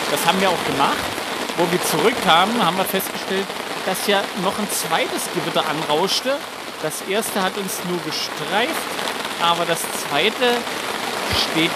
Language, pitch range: German, 155-210 Hz